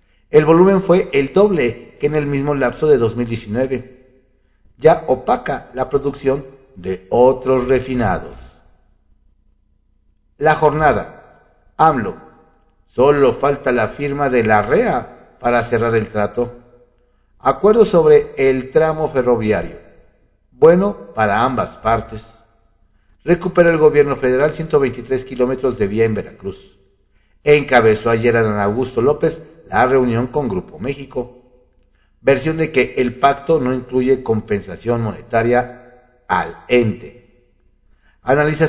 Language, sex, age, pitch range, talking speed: Spanish, male, 50-69, 115-145 Hz, 115 wpm